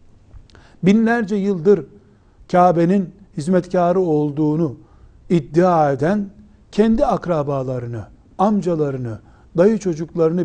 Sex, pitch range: male, 130-195 Hz